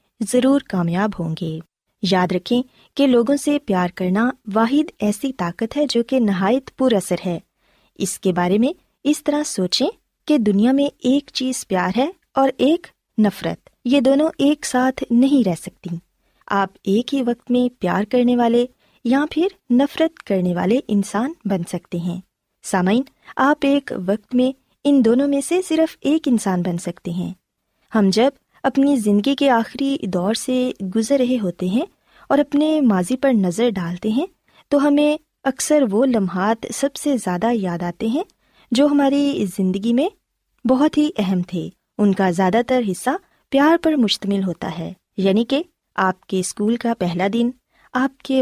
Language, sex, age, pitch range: Urdu, female, 20-39, 195-275 Hz